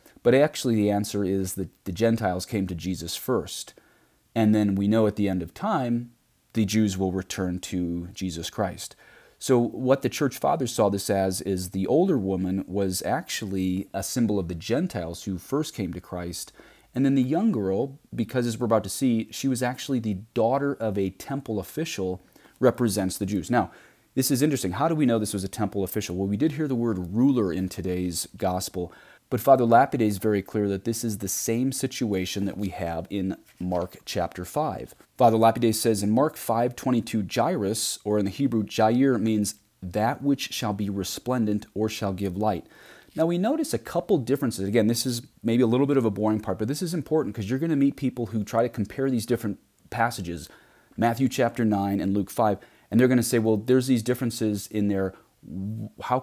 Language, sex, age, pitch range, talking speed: English, male, 30-49, 95-120 Hz, 205 wpm